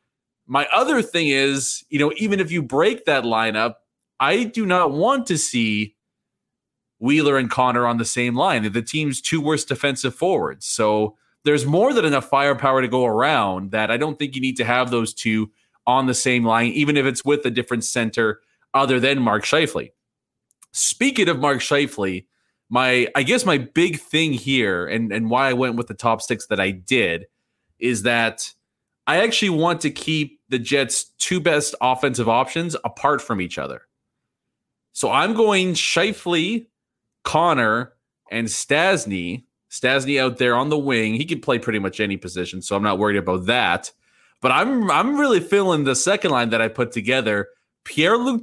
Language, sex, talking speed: English, male, 180 wpm